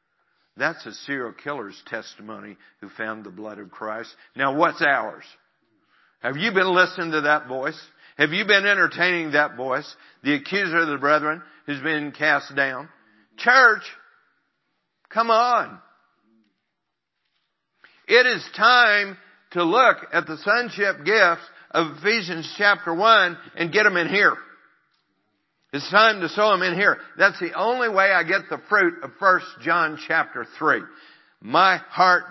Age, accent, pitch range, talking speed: 50-69, American, 150-195 Hz, 145 wpm